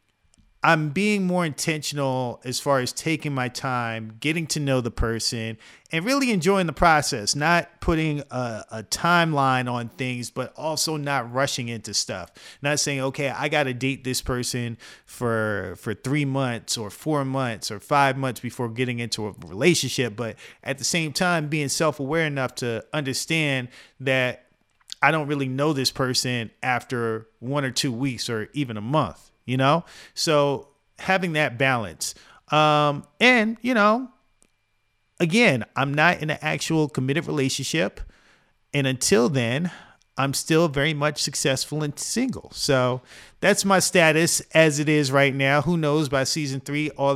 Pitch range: 125-155 Hz